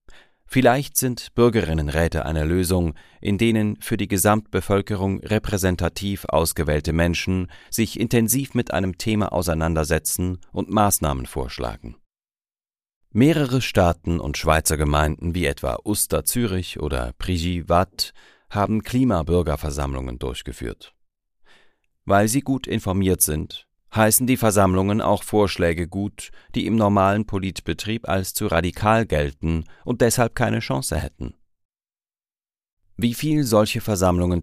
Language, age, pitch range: German, 30-49, 80-105 Hz